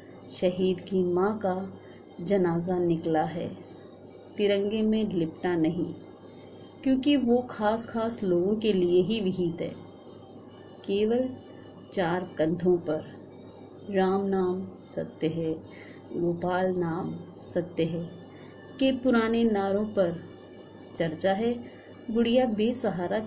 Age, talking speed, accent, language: 30-49, 105 wpm, native, Hindi